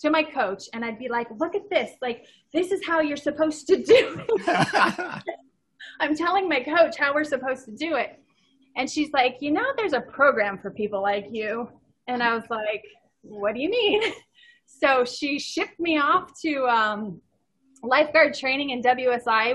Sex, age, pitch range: female, 30-49, 225-295 Hz